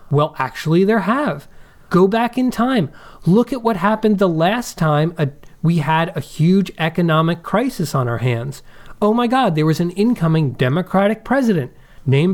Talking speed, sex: 165 wpm, male